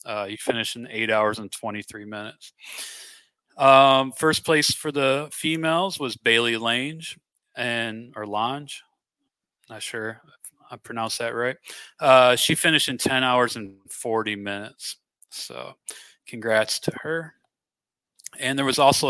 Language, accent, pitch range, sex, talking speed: English, American, 110-135 Hz, male, 140 wpm